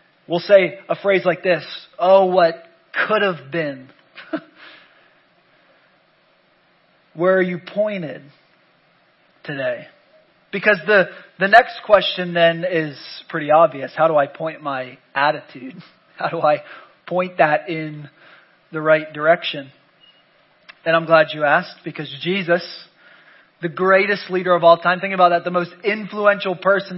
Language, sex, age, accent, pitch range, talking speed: English, male, 20-39, American, 165-190 Hz, 135 wpm